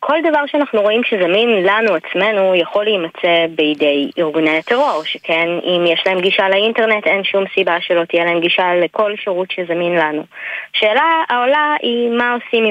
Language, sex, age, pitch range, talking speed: Hebrew, female, 20-39, 175-215 Hz, 160 wpm